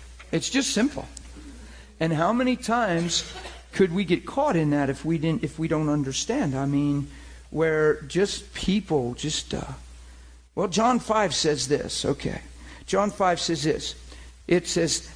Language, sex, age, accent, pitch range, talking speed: English, male, 50-69, American, 125-195 Hz, 155 wpm